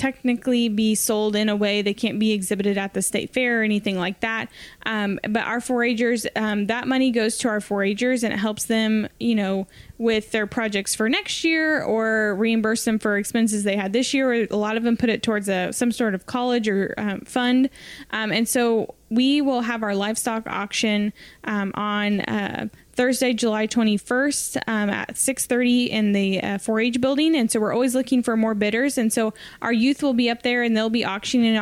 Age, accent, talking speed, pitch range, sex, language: 10-29, American, 205 wpm, 205-240 Hz, female, English